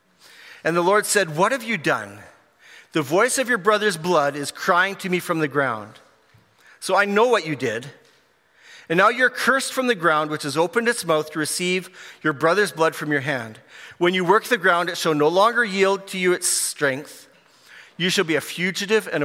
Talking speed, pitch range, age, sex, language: 210 wpm, 140-180 Hz, 40-59, male, English